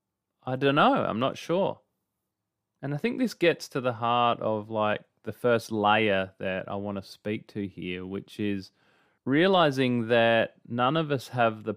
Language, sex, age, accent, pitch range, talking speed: English, male, 30-49, Australian, 100-120 Hz, 180 wpm